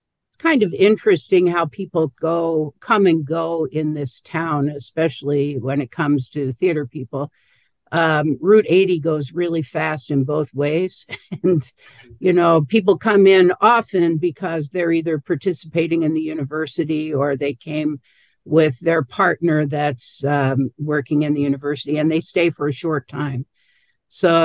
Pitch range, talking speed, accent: 145-175 Hz, 150 wpm, American